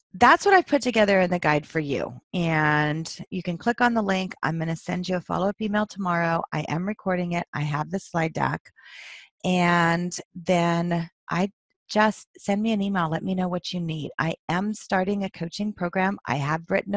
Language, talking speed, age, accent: English, 205 wpm, 30-49, American